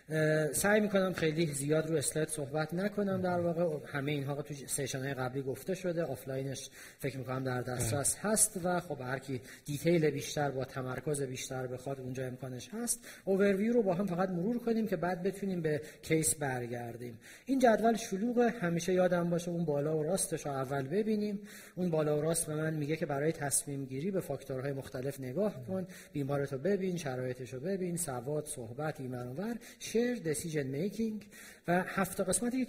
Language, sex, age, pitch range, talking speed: Persian, male, 40-59, 140-195 Hz, 165 wpm